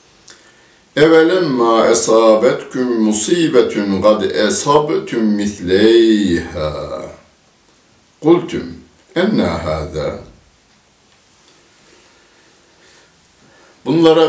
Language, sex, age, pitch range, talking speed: Turkish, male, 60-79, 80-120 Hz, 40 wpm